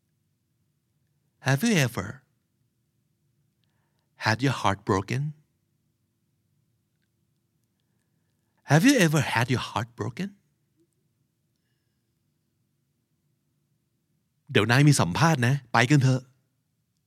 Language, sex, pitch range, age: Thai, male, 125-155 Hz, 60-79